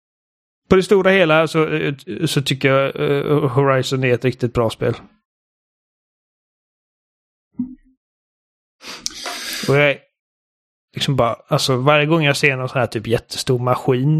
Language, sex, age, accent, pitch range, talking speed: Swedish, male, 30-49, native, 130-150 Hz, 125 wpm